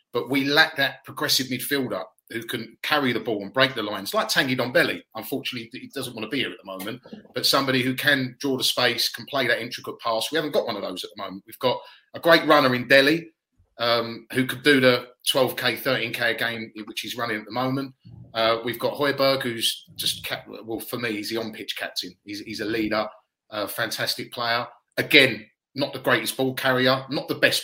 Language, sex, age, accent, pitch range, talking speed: English, male, 30-49, British, 115-135 Hz, 220 wpm